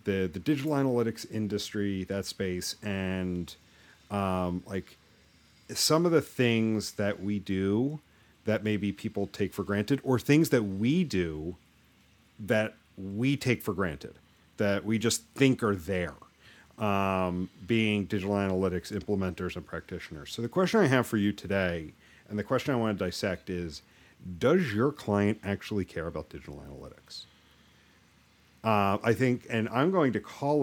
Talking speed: 155 wpm